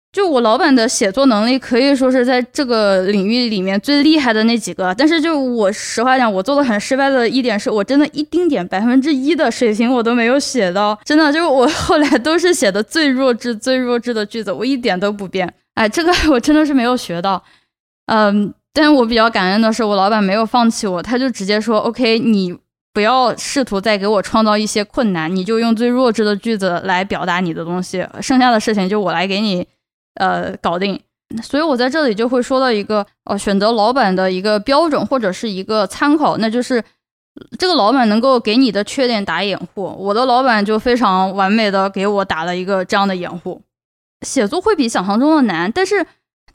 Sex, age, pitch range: female, 10-29, 200-265 Hz